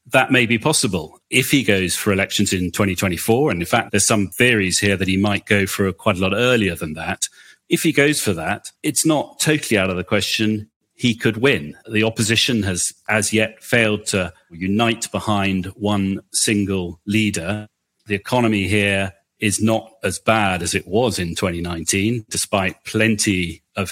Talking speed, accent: 180 wpm, British